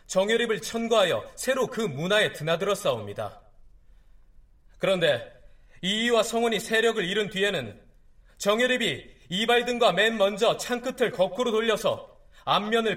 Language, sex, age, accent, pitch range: Korean, male, 30-49, native, 190-235 Hz